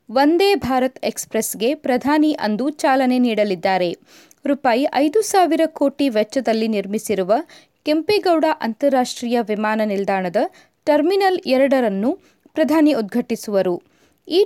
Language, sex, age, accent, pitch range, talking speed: Kannada, female, 20-39, native, 215-300 Hz, 90 wpm